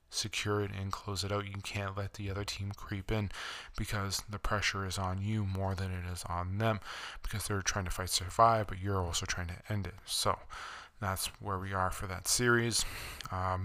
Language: English